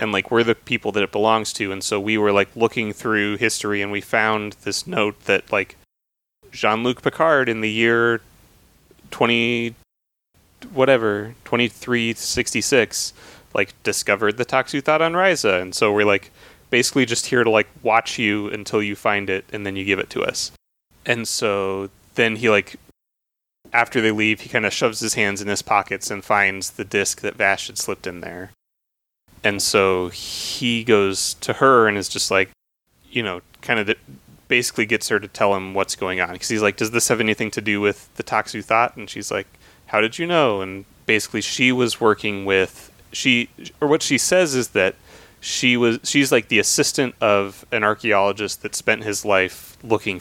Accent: American